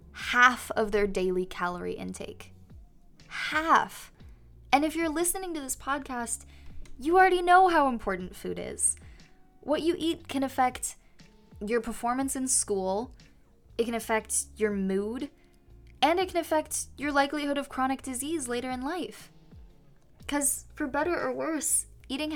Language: English